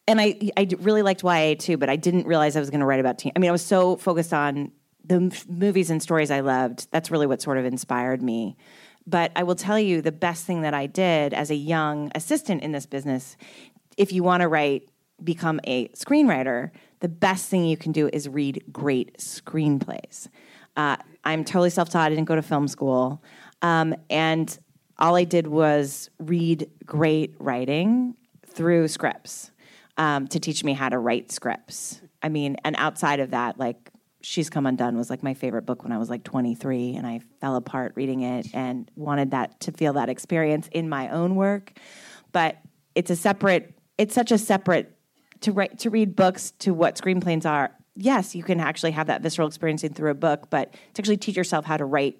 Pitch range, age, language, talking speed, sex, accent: 140-180 Hz, 30-49, English, 205 wpm, female, American